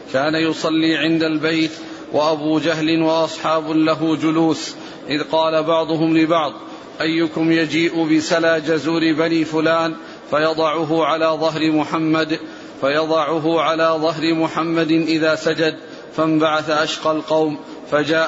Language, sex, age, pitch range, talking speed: Arabic, male, 40-59, 160-165 Hz, 110 wpm